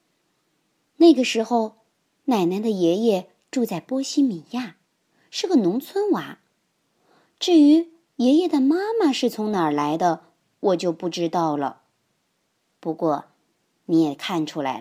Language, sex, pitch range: Chinese, male, 165-265 Hz